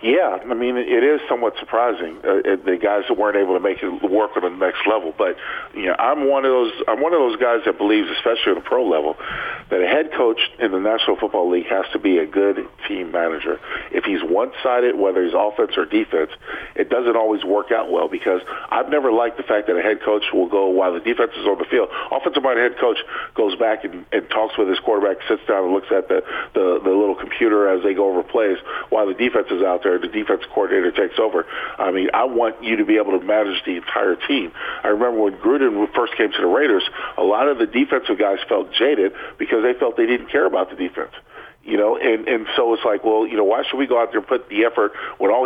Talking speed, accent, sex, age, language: 250 wpm, American, male, 50-69, English